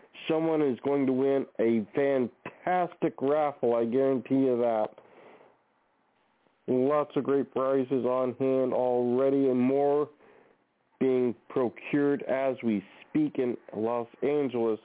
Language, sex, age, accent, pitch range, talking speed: English, male, 40-59, American, 120-140 Hz, 115 wpm